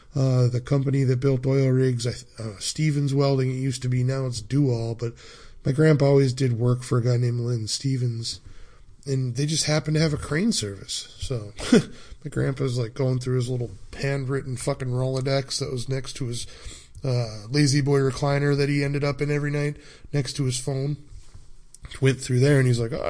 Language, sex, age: English, male, 20-39